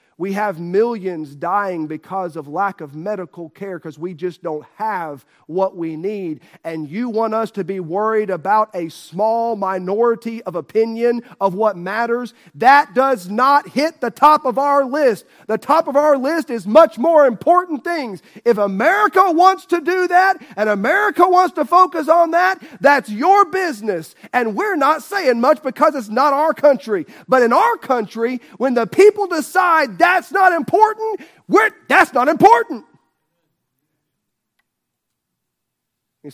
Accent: American